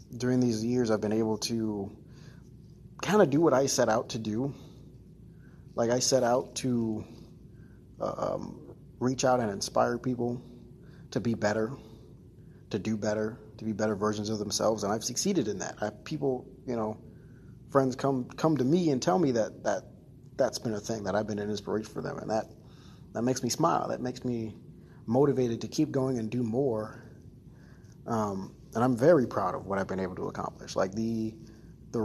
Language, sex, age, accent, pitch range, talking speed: English, male, 30-49, American, 110-135 Hz, 190 wpm